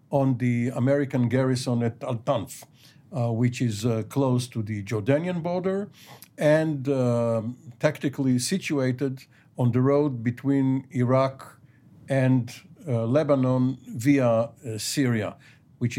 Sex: male